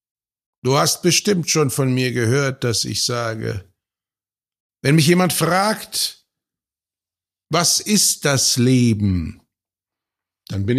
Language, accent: German, German